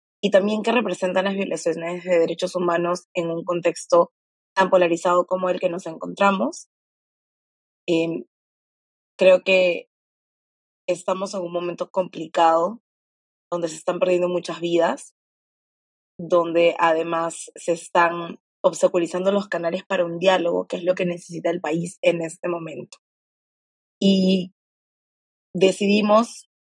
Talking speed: 125 wpm